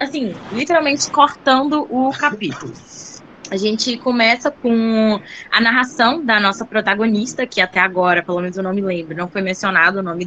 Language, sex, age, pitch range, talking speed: Portuguese, female, 20-39, 215-260 Hz, 165 wpm